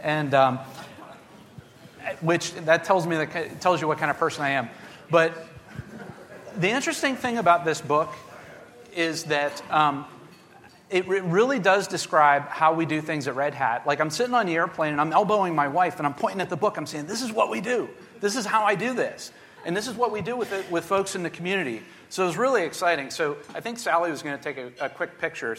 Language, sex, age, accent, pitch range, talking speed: English, male, 40-59, American, 150-185 Hz, 235 wpm